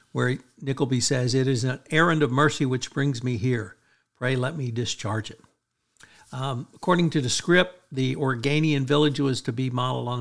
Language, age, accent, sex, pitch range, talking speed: English, 60-79, American, male, 120-150 Hz, 180 wpm